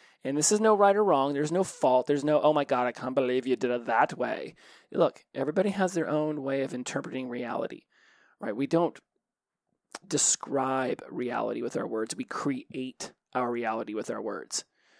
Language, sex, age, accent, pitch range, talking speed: English, male, 30-49, American, 130-155 Hz, 190 wpm